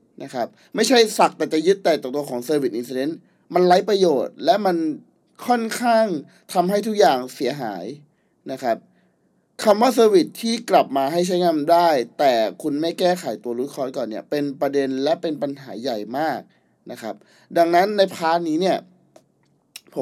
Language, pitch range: Thai, 140-180 Hz